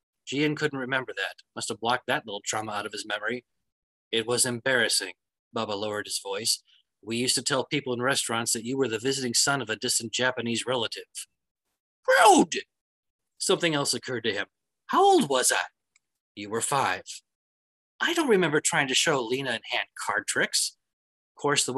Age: 30-49